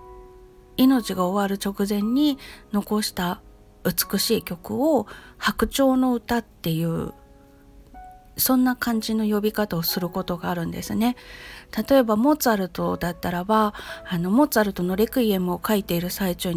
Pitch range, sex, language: 180-250 Hz, female, Japanese